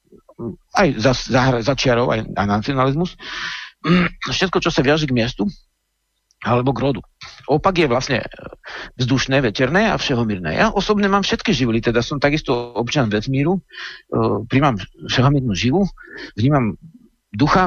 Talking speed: 130 wpm